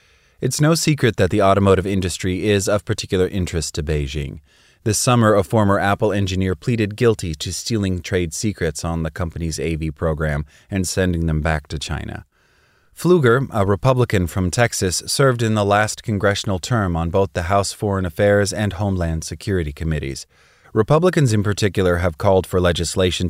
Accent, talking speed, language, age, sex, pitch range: American, 165 wpm, English, 30-49, male, 85-110 Hz